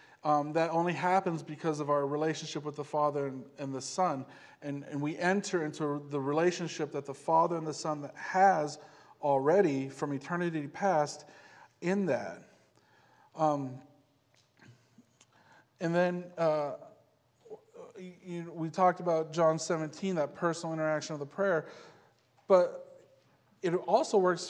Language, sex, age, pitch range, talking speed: English, male, 40-59, 145-175 Hz, 135 wpm